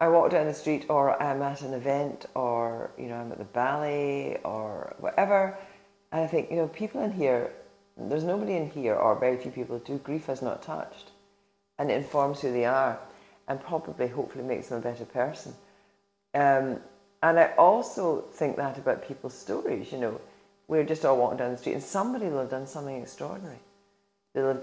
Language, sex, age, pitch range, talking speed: English, female, 40-59, 120-160 Hz, 195 wpm